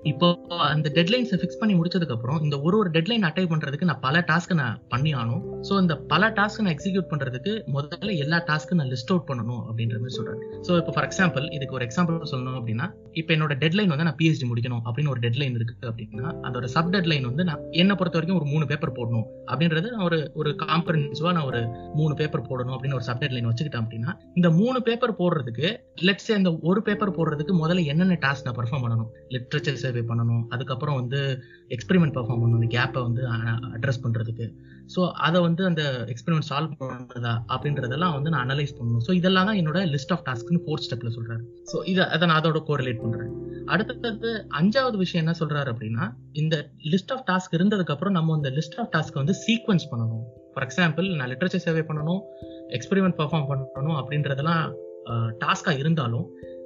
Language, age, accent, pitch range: Tamil, 20-39, native, 125-175 Hz